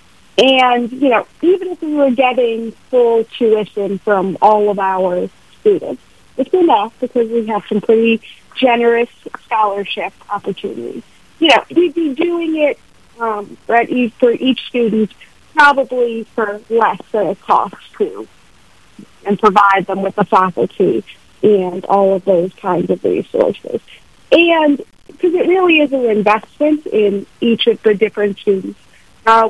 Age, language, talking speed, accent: 40-59, English, 145 wpm, American